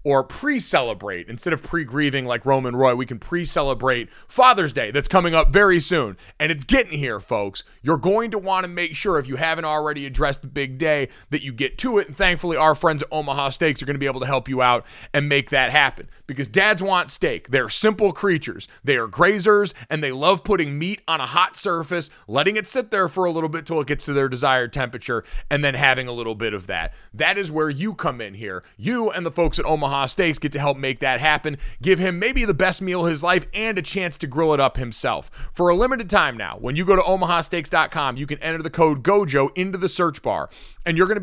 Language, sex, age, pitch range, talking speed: English, male, 30-49, 140-185 Hz, 240 wpm